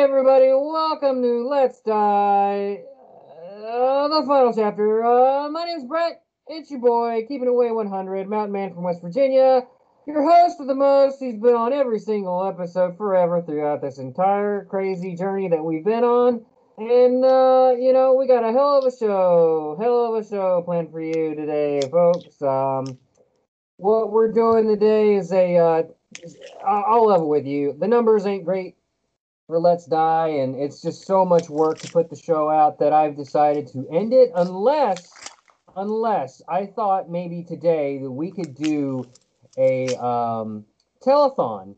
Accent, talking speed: American, 165 wpm